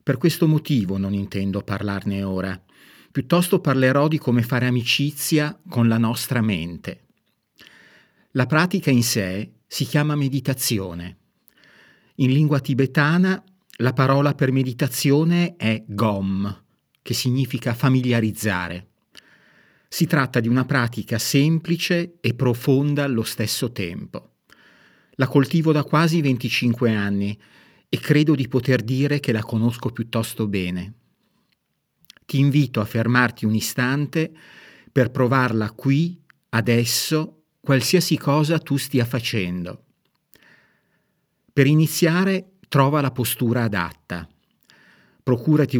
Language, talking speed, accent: Italian, 110 wpm, native